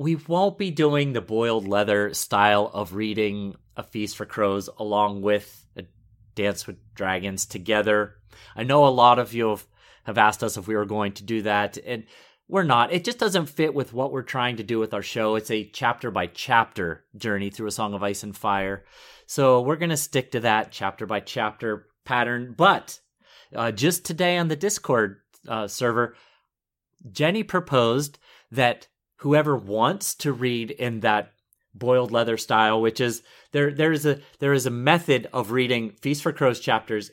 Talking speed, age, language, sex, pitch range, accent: 180 wpm, 30-49, English, male, 105-135 Hz, American